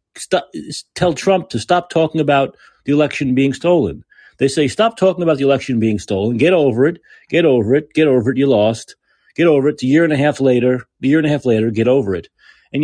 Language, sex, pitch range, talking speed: English, male, 130-175 Hz, 240 wpm